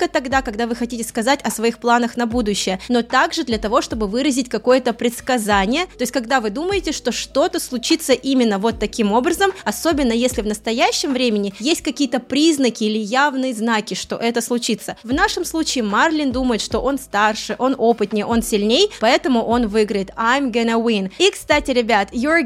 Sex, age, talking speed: female, 20-39, 180 wpm